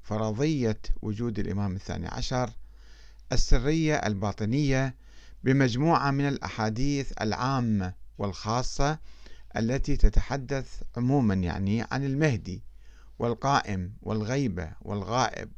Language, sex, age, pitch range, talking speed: Arabic, male, 50-69, 100-135 Hz, 80 wpm